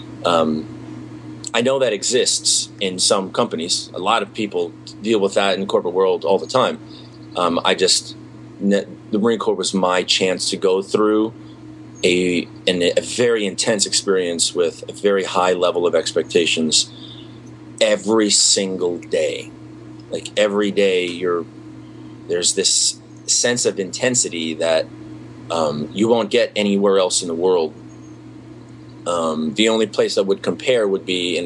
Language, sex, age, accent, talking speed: English, male, 30-49, American, 150 wpm